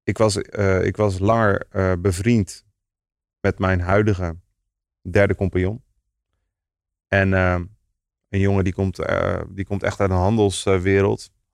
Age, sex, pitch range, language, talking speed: 30-49, male, 90-100 Hz, Dutch, 140 wpm